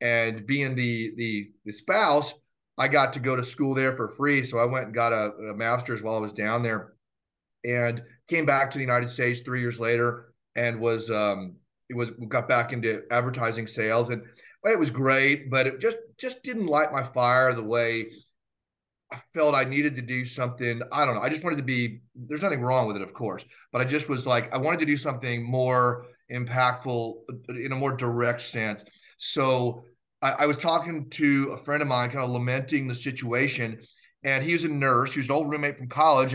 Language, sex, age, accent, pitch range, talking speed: English, male, 30-49, American, 120-145 Hz, 215 wpm